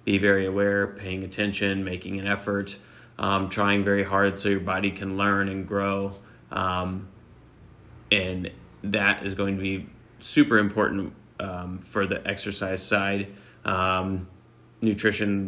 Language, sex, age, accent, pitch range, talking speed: English, male, 30-49, American, 95-105 Hz, 135 wpm